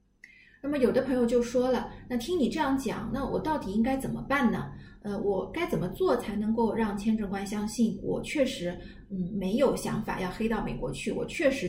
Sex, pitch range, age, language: female, 205-255 Hz, 20-39, Chinese